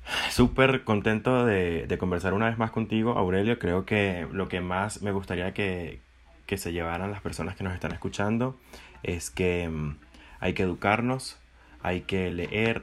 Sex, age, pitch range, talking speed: male, 20-39, 85-100 Hz, 165 wpm